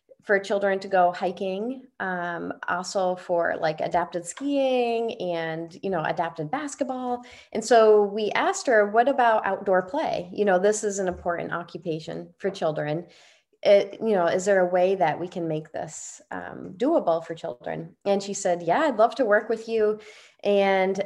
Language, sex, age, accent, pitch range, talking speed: English, female, 30-49, American, 175-220 Hz, 175 wpm